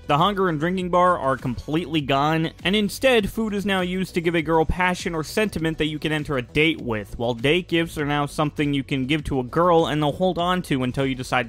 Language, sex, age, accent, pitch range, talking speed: English, male, 20-39, American, 130-180 Hz, 250 wpm